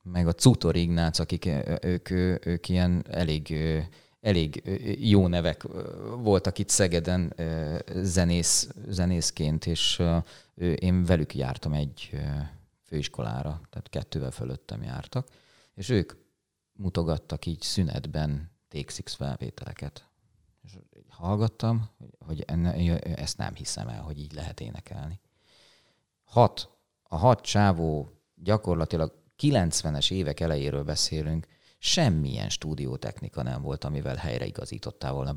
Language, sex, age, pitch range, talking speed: Hungarian, male, 30-49, 80-100 Hz, 100 wpm